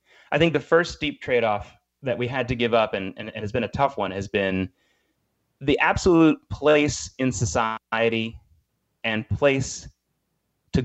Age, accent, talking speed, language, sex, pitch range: 30-49, American, 165 wpm, English, male, 115-155 Hz